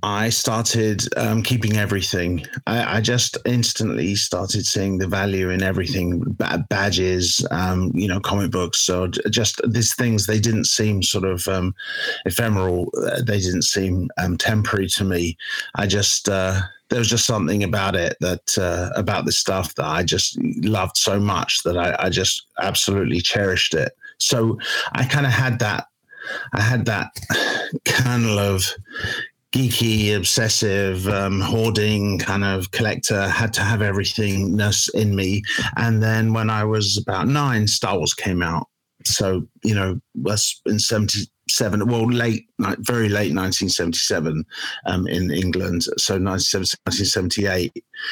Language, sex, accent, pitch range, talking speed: English, male, British, 95-115 Hz, 145 wpm